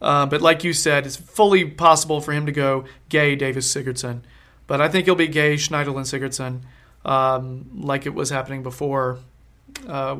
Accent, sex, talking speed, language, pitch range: American, male, 180 wpm, English, 135-165 Hz